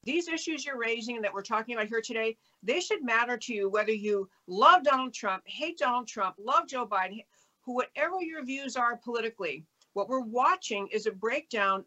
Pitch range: 195-250 Hz